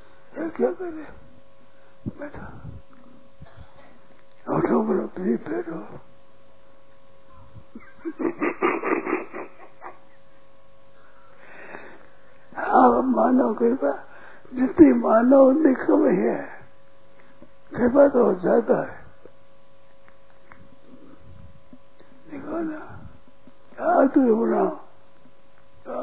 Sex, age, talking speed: male, 60-79, 60 wpm